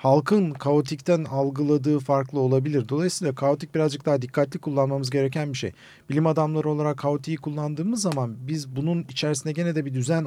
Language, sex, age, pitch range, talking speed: Turkish, male, 50-69, 130-160 Hz, 160 wpm